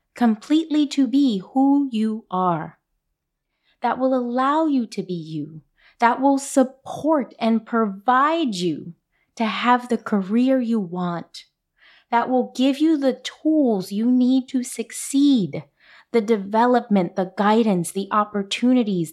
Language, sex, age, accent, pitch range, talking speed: English, female, 30-49, American, 195-265 Hz, 130 wpm